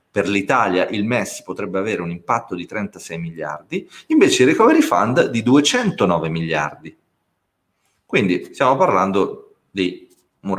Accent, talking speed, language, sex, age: native, 130 wpm, Italian, male, 30-49